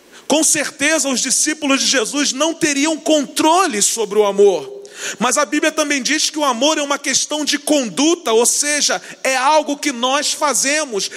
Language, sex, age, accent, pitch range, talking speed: Portuguese, male, 40-59, Brazilian, 245-305 Hz, 170 wpm